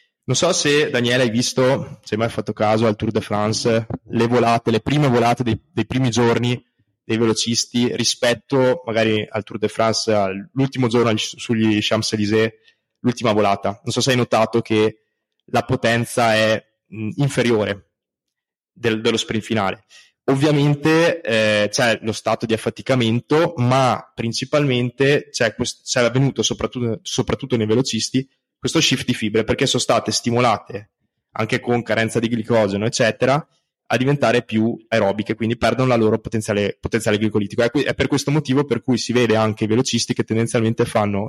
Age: 20-39